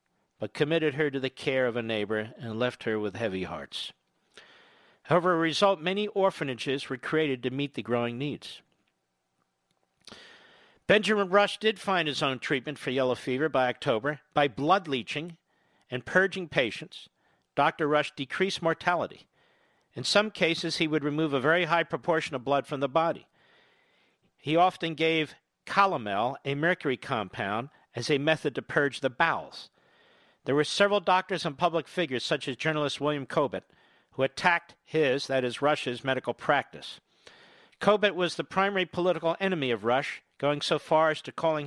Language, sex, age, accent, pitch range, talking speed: English, male, 50-69, American, 130-170 Hz, 165 wpm